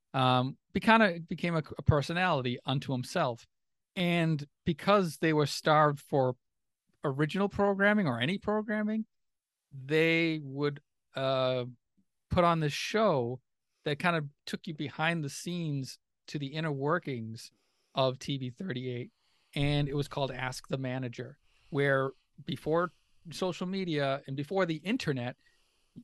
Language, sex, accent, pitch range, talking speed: English, male, American, 130-165 Hz, 135 wpm